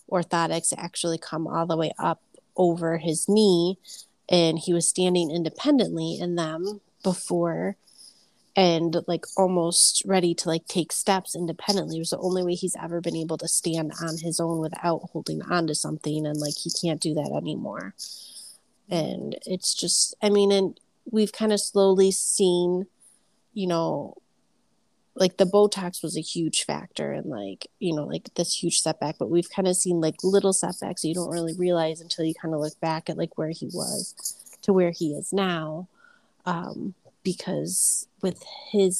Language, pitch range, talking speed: English, 165-190 Hz, 175 wpm